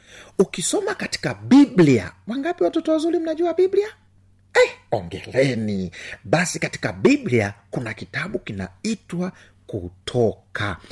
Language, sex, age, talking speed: Swahili, male, 50-69, 95 wpm